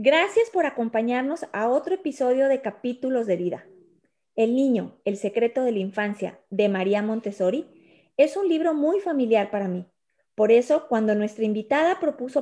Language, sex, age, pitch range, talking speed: Spanish, female, 30-49, 210-300 Hz, 160 wpm